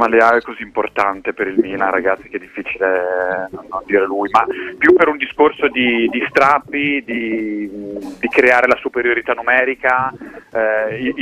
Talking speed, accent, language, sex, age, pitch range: 150 wpm, native, Italian, male, 30-49, 115-140 Hz